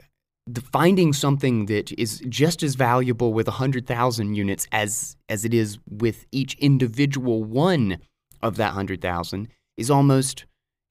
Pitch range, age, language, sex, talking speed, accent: 115-150 Hz, 20-39, English, male, 130 wpm, American